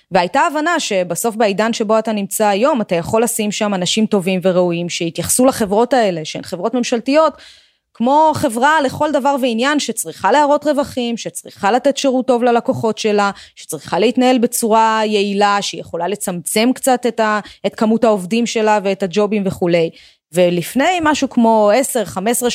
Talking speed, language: 140 wpm, Hebrew